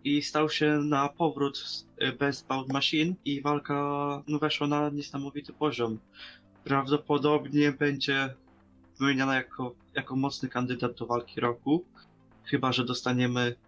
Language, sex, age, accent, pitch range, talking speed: Polish, male, 20-39, native, 125-145 Hz, 120 wpm